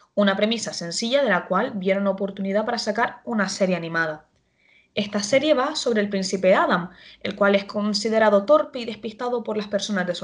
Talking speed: 195 wpm